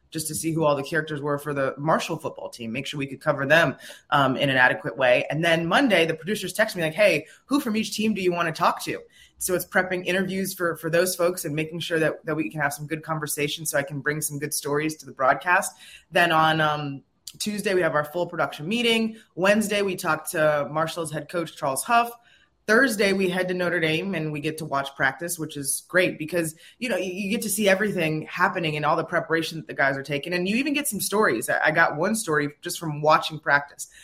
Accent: American